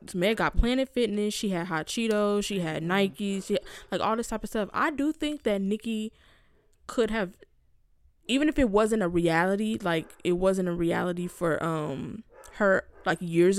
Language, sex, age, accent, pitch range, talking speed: English, female, 20-39, American, 180-225 Hz, 185 wpm